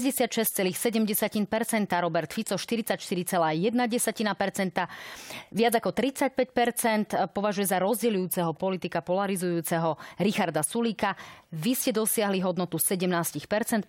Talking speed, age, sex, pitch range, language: 80 wpm, 30-49, female, 170-215 Hz, Slovak